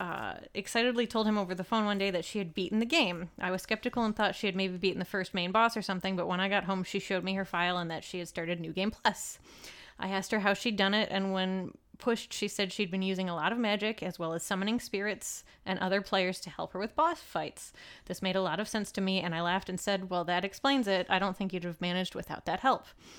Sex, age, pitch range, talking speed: female, 20-39, 185-225 Hz, 275 wpm